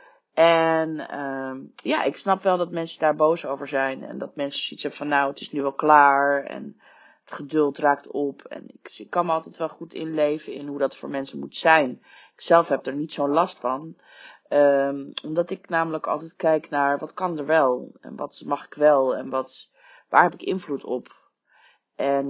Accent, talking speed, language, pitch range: Dutch, 205 wpm, Dutch, 140-160 Hz